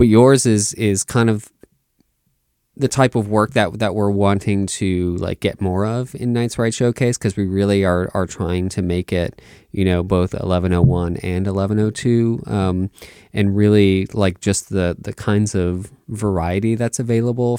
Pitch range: 90-110 Hz